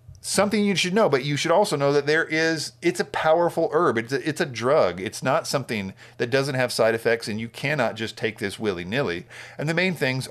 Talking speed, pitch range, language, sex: 225 wpm, 110-135 Hz, English, male